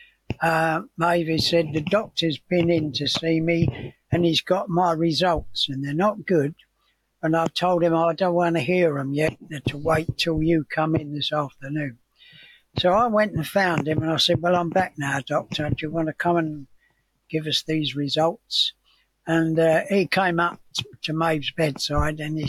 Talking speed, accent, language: 195 wpm, British, English